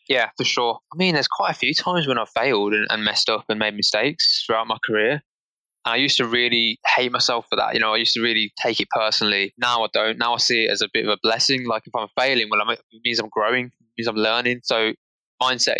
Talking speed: 255 wpm